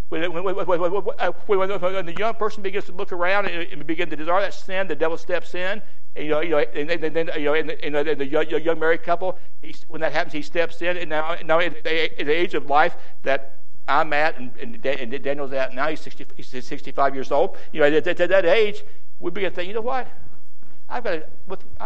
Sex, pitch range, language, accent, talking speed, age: male, 130-200 Hz, English, American, 235 wpm, 60-79